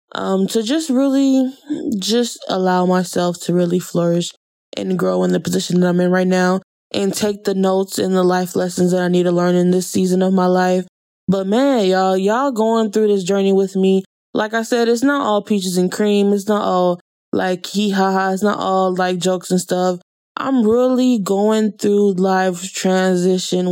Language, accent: English, American